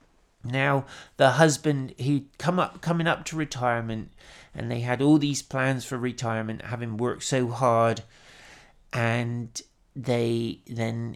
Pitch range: 115-135 Hz